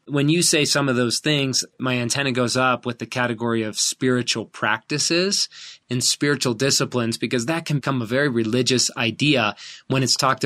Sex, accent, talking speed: male, American, 180 wpm